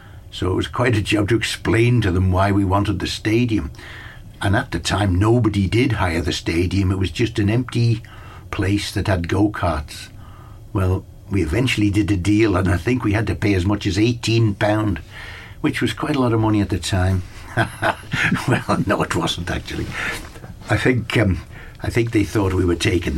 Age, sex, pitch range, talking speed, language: 60-79, male, 95-115 Hz, 190 wpm, English